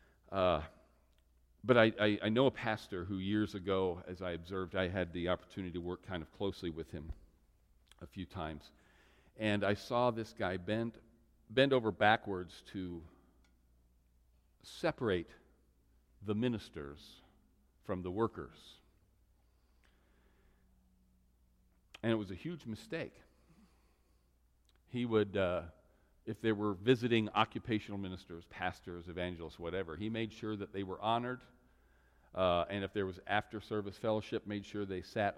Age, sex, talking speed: 40-59, male, 135 wpm